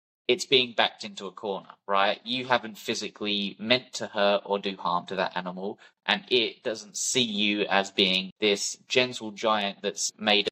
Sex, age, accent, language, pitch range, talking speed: male, 20-39, British, English, 100-120 Hz, 175 wpm